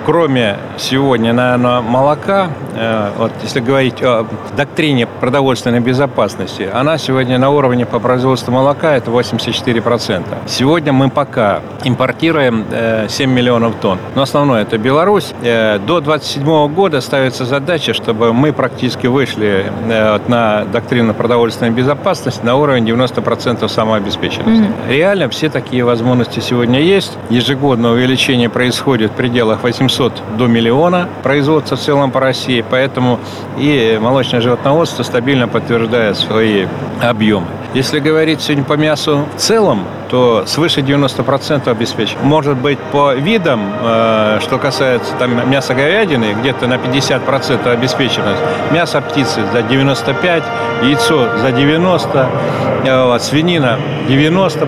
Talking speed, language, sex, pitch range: 120 wpm, Russian, male, 120-145 Hz